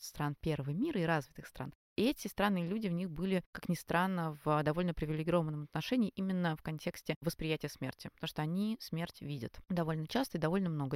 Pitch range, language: 145-180 Hz, Russian